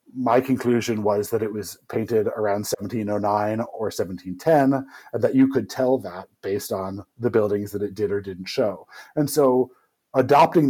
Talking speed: 170 wpm